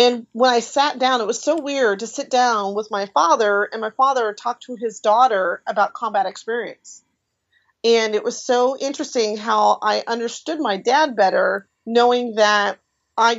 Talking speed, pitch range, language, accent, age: 175 wpm, 205-245 Hz, English, American, 40-59